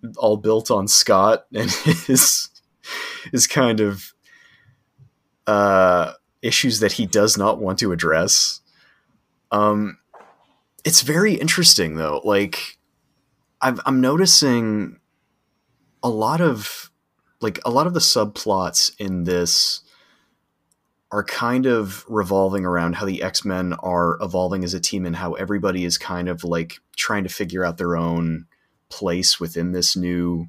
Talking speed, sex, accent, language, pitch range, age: 130 wpm, male, American, English, 85-105 Hz, 30-49